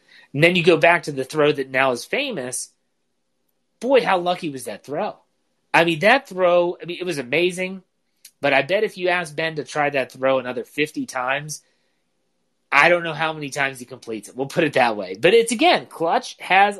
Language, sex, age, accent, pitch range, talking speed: English, male, 30-49, American, 135-175 Hz, 215 wpm